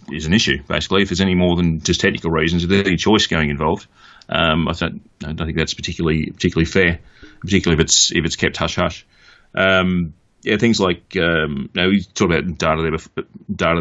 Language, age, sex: English, 30-49, male